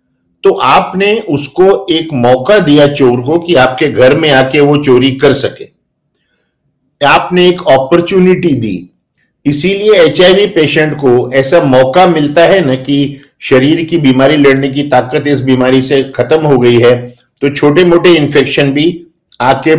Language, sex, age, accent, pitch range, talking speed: Hindi, male, 50-69, native, 125-170 Hz, 150 wpm